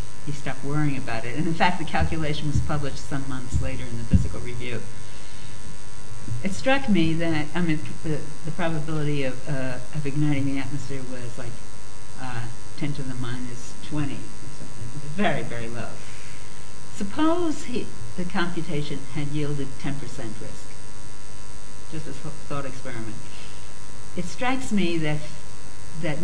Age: 60-79